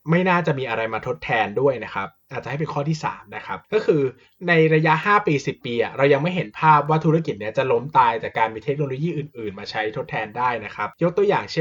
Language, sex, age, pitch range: Thai, male, 20-39, 130-175 Hz